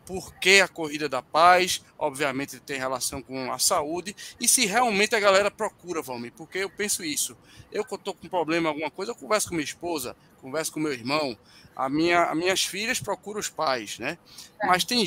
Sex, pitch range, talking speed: male, 150-205 Hz, 200 wpm